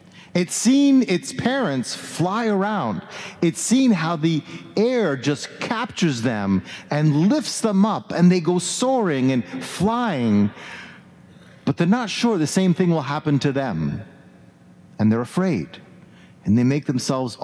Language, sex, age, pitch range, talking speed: English, male, 50-69, 140-200 Hz, 145 wpm